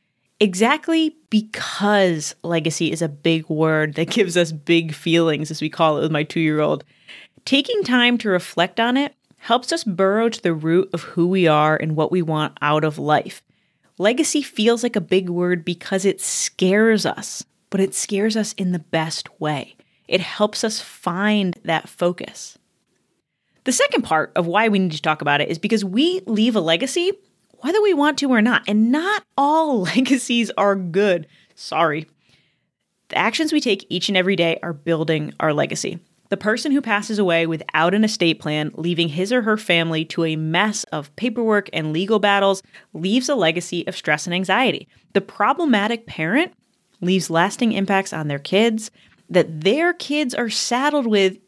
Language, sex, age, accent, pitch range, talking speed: English, female, 20-39, American, 165-230 Hz, 175 wpm